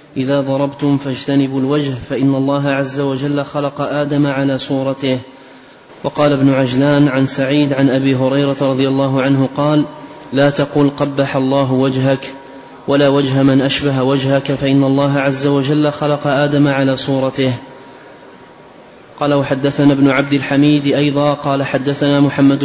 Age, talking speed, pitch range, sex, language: 20-39, 135 wpm, 135-145 Hz, male, Arabic